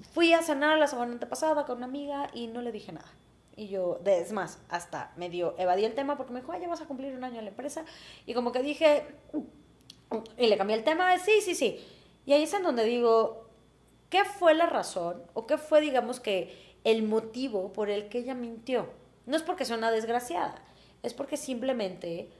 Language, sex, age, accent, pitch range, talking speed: Spanish, female, 20-39, Mexican, 185-245 Hz, 220 wpm